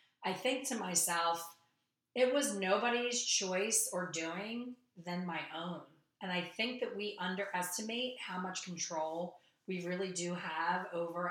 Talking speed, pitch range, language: 145 wpm, 170-195 Hz, English